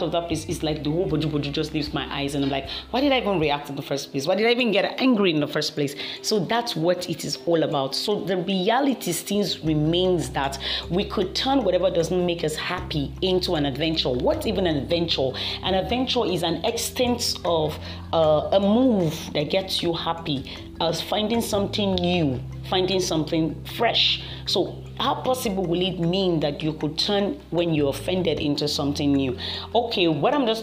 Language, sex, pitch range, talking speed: English, female, 150-190 Hz, 200 wpm